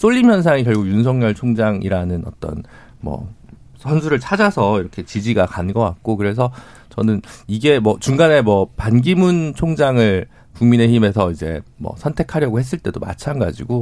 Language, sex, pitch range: Korean, male, 110-165 Hz